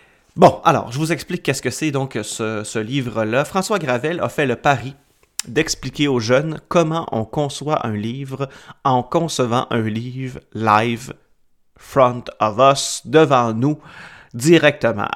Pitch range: 115-150 Hz